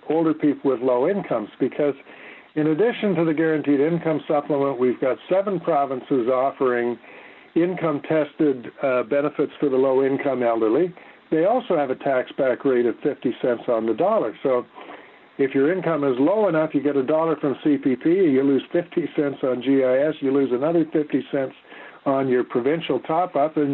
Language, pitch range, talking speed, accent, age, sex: English, 130-155 Hz, 165 wpm, American, 60-79, male